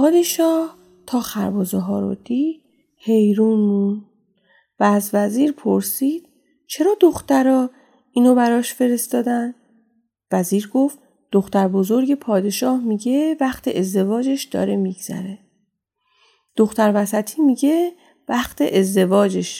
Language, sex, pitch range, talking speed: Persian, female, 200-290 Hz, 100 wpm